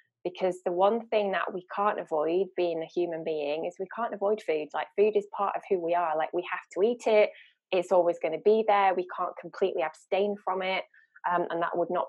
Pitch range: 165-195 Hz